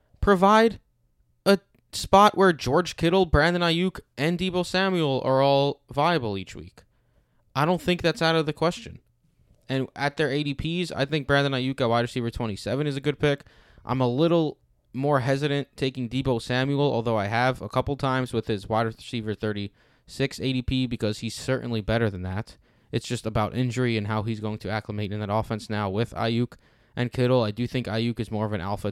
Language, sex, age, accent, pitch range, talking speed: English, male, 20-39, American, 110-135 Hz, 195 wpm